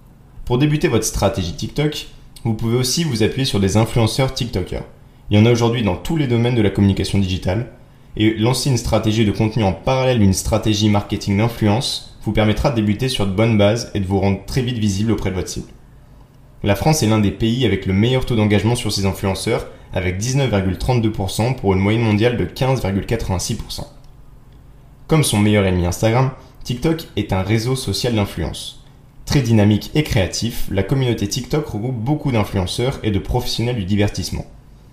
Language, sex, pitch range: French, male, 100-130 Hz